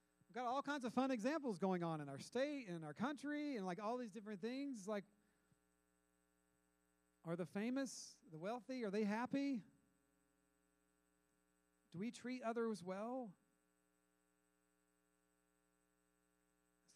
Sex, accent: male, American